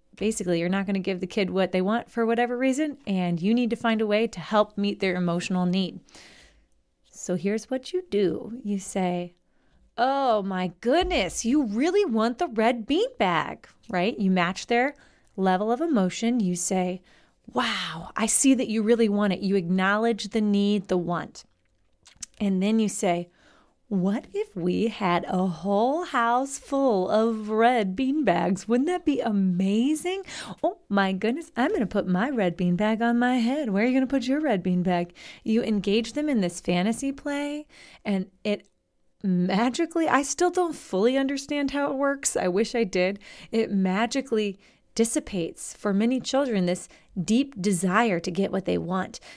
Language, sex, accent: English, female, American